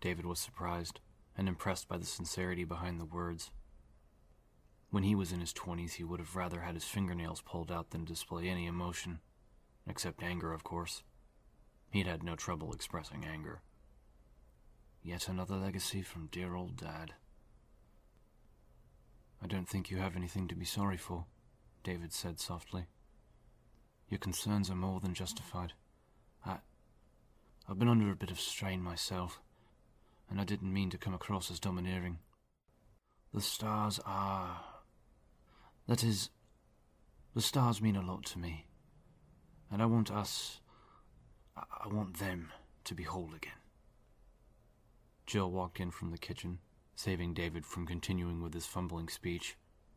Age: 30-49